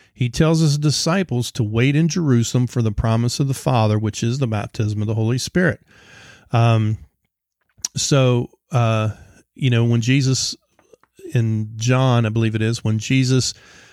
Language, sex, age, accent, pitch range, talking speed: English, male, 40-59, American, 110-125 Hz, 160 wpm